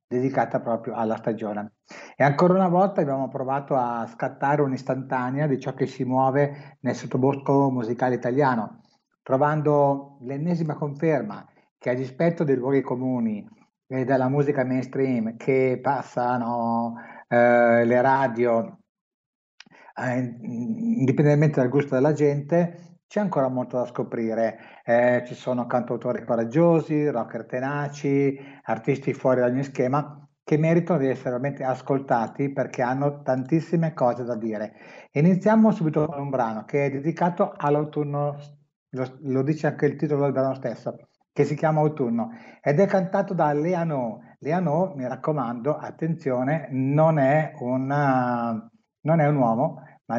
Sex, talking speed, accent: male, 135 wpm, native